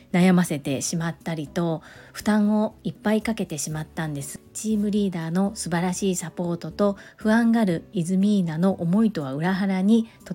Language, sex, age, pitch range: Japanese, female, 40-59, 170-205 Hz